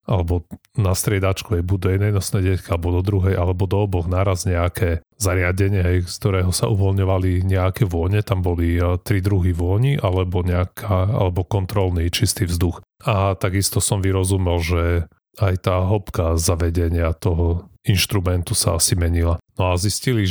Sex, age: male, 30-49